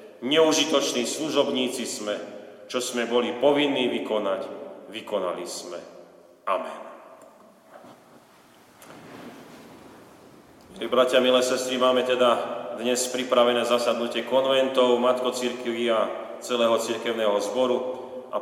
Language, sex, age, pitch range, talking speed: Slovak, male, 40-59, 115-130 Hz, 90 wpm